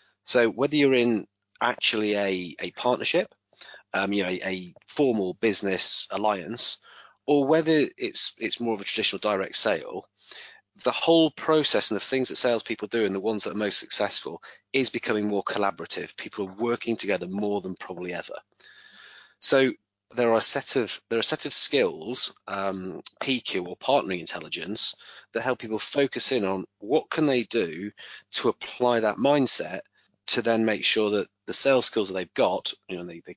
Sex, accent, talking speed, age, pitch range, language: male, British, 180 wpm, 30-49, 100-120 Hz, English